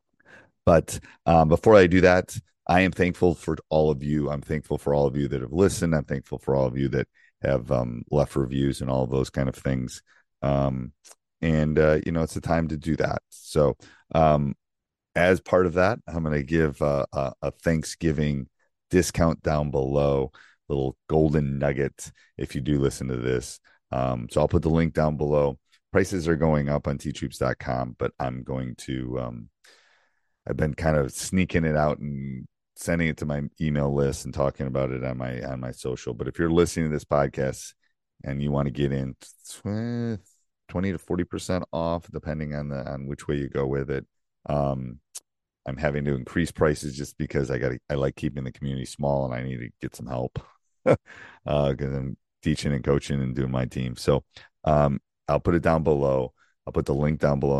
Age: 30-49